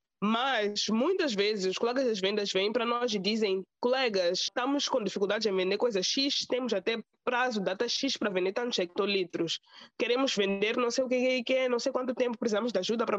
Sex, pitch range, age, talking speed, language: female, 200-255 Hz, 20-39, 200 wpm, Portuguese